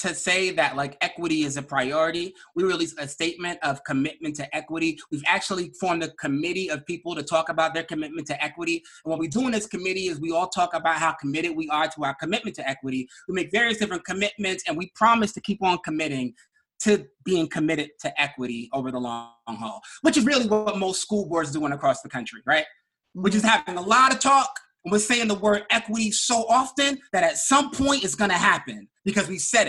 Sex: male